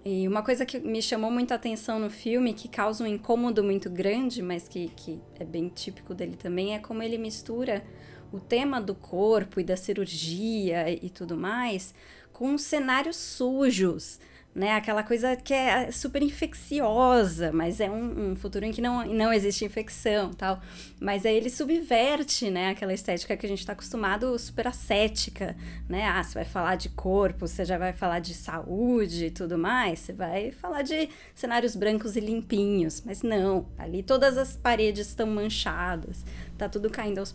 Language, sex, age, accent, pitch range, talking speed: Portuguese, female, 20-39, Brazilian, 185-230 Hz, 175 wpm